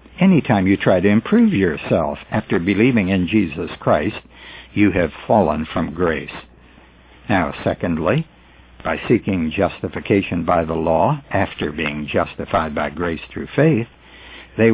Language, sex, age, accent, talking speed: English, male, 60-79, American, 135 wpm